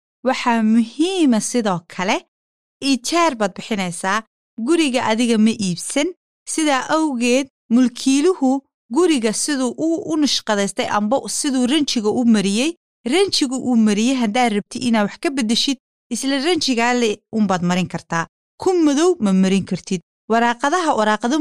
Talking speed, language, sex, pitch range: 125 wpm, Swahili, female, 205-275 Hz